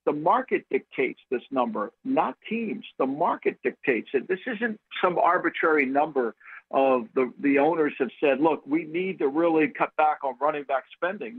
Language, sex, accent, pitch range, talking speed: English, male, American, 155-225 Hz, 175 wpm